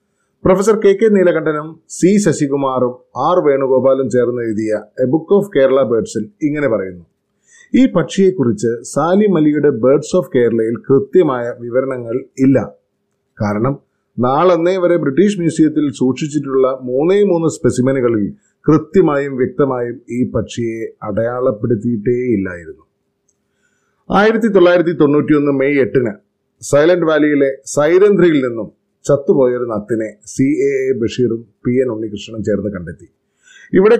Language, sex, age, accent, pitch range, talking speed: Malayalam, male, 30-49, native, 120-160 Hz, 110 wpm